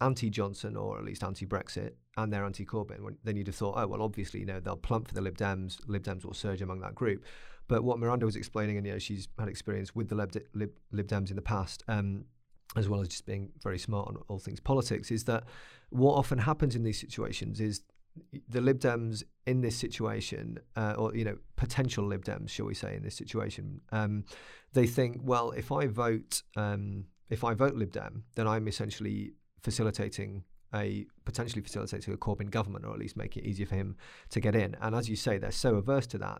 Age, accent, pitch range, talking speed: 30-49, British, 100-120 Hz, 215 wpm